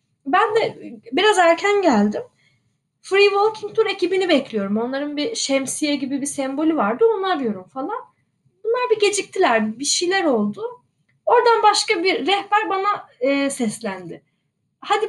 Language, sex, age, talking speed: Turkish, female, 10-29, 130 wpm